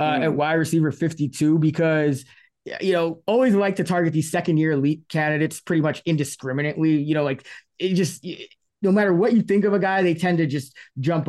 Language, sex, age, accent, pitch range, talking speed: English, male, 20-39, American, 145-185 Hz, 200 wpm